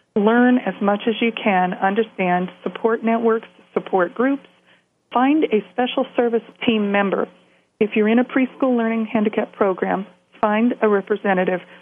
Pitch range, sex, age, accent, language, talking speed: 185-225 Hz, female, 40-59, American, English, 140 wpm